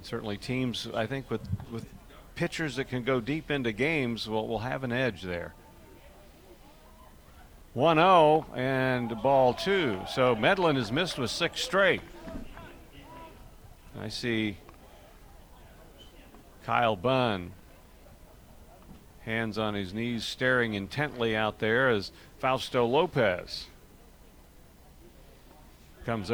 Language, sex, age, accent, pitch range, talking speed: English, male, 50-69, American, 110-135 Hz, 105 wpm